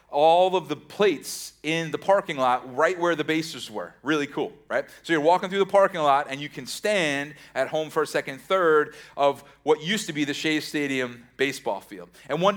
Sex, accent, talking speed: male, American, 215 wpm